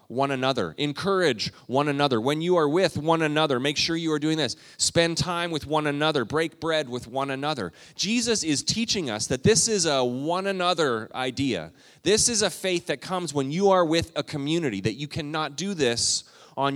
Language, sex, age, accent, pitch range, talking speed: English, male, 30-49, American, 135-180 Hz, 200 wpm